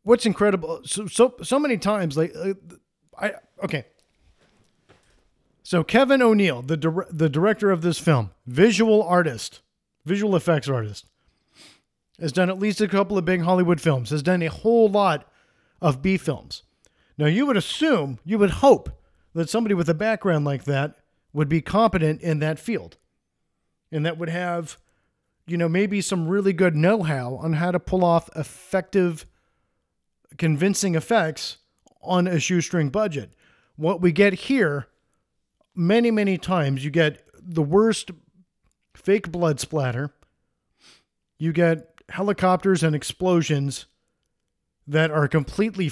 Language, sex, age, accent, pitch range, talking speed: English, male, 40-59, American, 155-200 Hz, 140 wpm